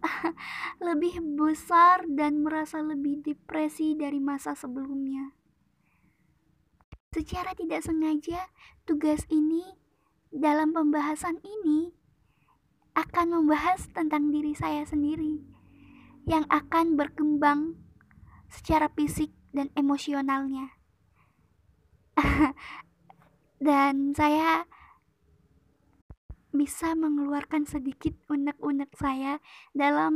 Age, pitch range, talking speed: 20-39, 290-330 Hz, 75 wpm